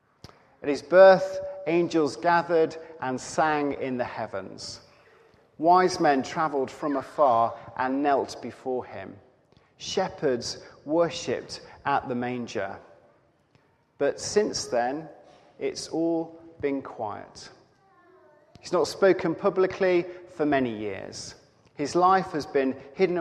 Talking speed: 110 wpm